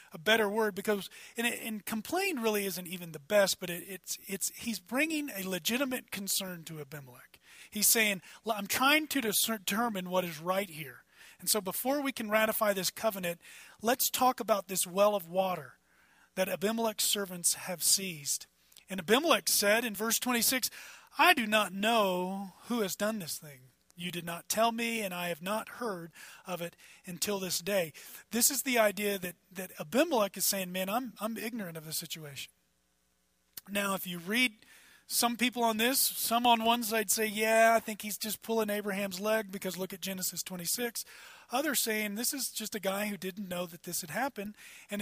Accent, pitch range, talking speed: American, 185-230 Hz, 190 wpm